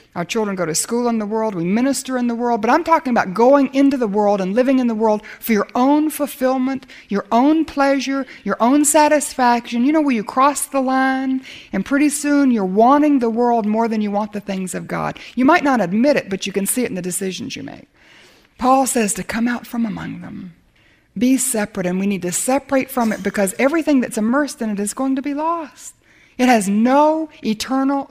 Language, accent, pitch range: English, American, 205-270 Hz